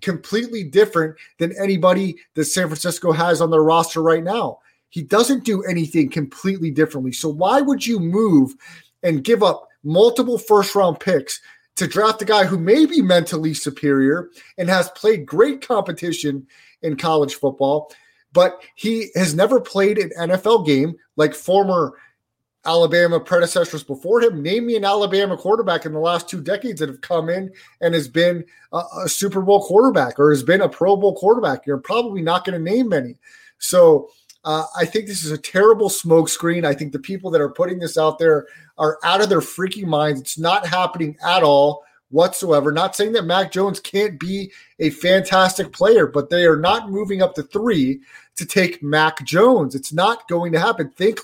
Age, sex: 30-49, male